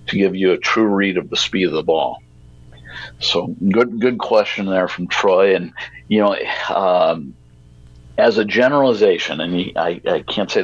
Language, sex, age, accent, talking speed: English, male, 50-69, American, 175 wpm